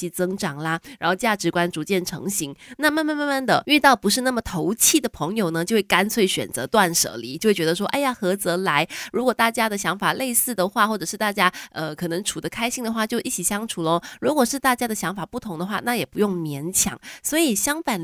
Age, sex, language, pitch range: 20-39, female, Chinese, 175-230 Hz